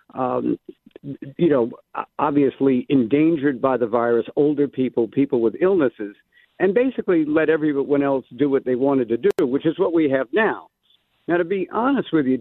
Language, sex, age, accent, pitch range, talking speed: English, male, 60-79, American, 135-215 Hz, 175 wpm